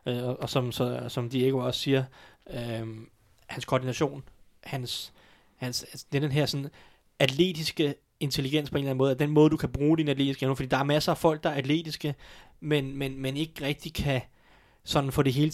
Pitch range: 130-155 Hz